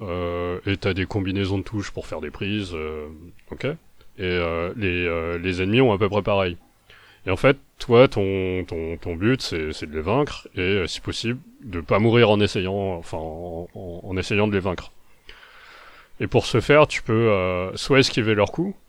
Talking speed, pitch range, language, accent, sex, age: 205 wpm, 85-105 Hz, French, French, male, 30-49